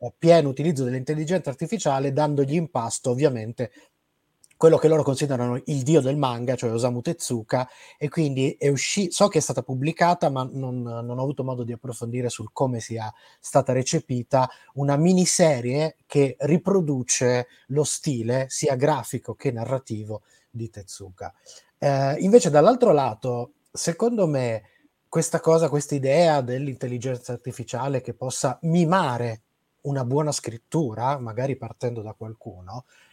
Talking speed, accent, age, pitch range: 135 wpm, native, 20-39, 120-150 Hz